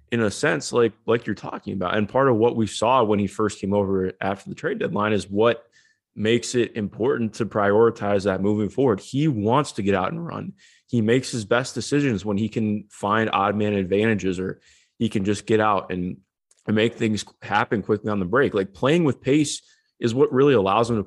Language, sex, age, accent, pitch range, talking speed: English, male, 20-39, American, 100-115 Hz, 220 wpm